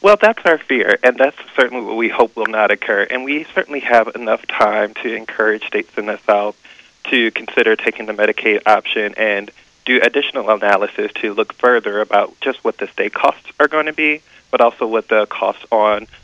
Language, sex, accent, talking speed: English, male, American, 200 wpm